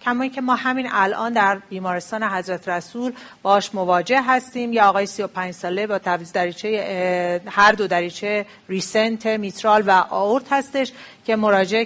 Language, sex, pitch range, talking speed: Persian, female, 195-250 Hz, 145 wpm